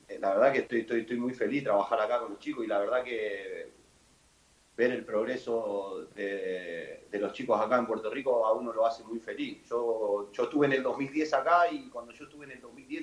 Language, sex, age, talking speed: Spanish, male, 30-49, 225 wpm